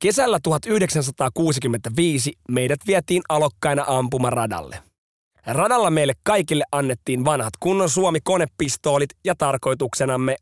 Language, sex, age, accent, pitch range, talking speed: Finnish, male, 30-49, native, 130-170 Hz, 85 wpm